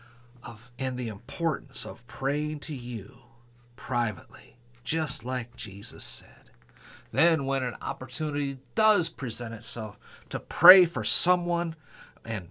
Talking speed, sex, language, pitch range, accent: 120 wpm, male, English, 120-155 Hz, American